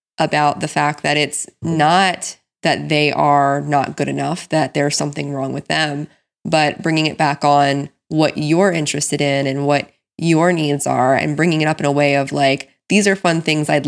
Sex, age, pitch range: female, 20-39, 145-195 Hz